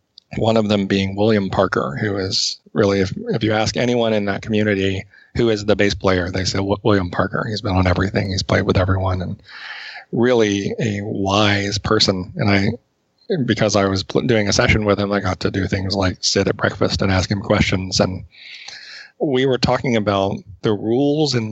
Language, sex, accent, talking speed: English, male, American, 200 wpm